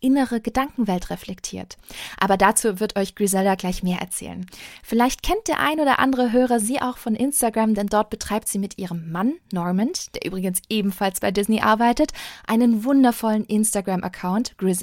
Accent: German